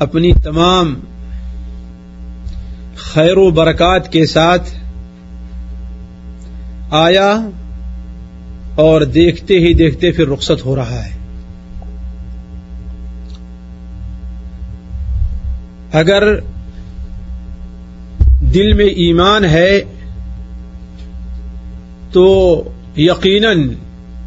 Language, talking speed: Urdu, 60 wpm